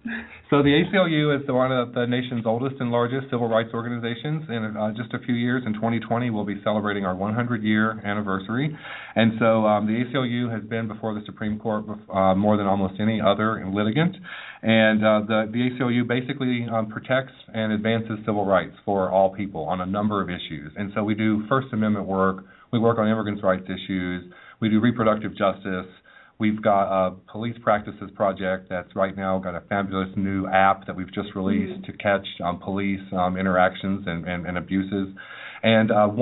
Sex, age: male, 40-59